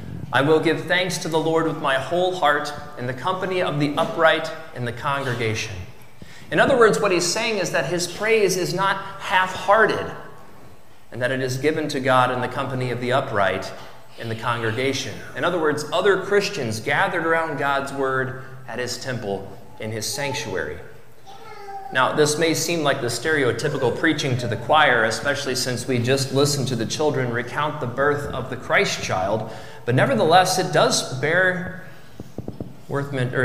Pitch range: 125-165 Hz